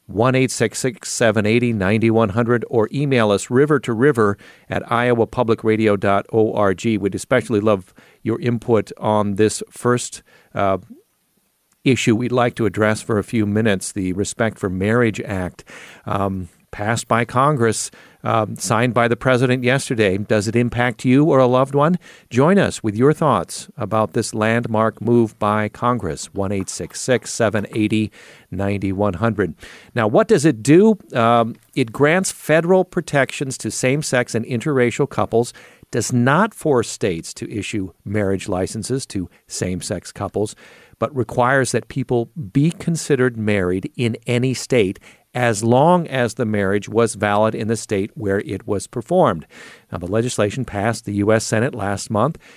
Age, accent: 40-59, American